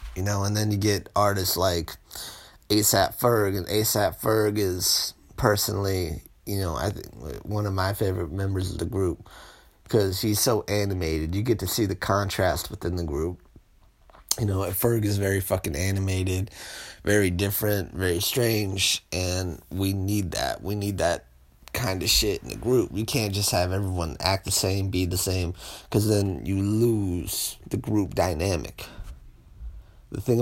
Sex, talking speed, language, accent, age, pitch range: male, 165 wpm, English, American, 30-49, 90-105 Hz